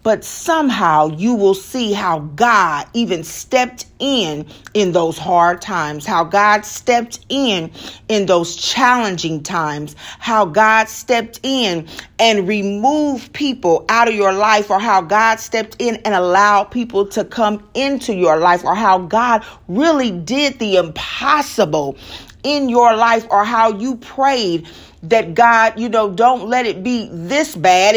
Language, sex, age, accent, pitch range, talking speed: English, female, 40-59, American, 195-250 Hz, 150 wpm